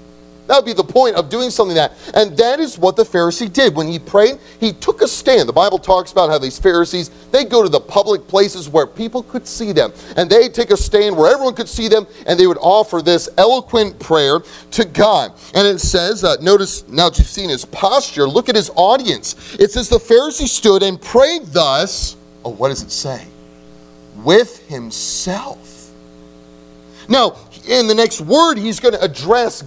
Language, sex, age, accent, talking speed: English, male, 30-49, American, 200 wpm